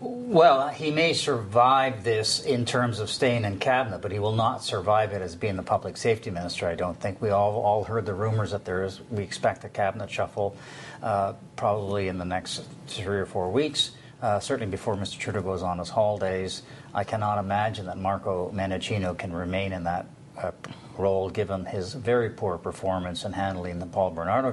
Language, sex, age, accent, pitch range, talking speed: English, male, 40-59, American, 100-135 Hz, 195 wpm